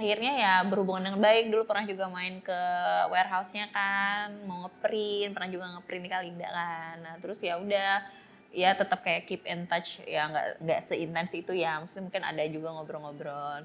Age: 20-39